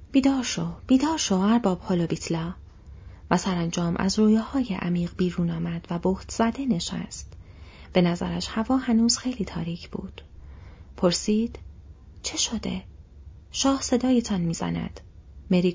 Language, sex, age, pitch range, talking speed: Persian, female, 30-49, 175-230 Hz, 125 wpm